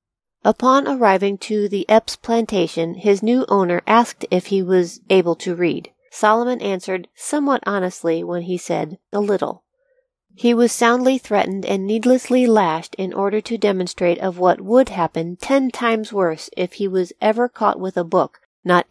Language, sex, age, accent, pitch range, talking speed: English, female, 40-59, American, 175-230 Hz, 165 wpm